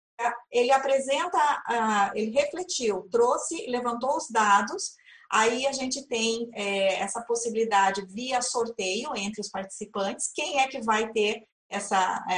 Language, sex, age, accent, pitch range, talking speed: Portuguese, female, 30-49, Brazilian, 215-270 Hz, 120 wpm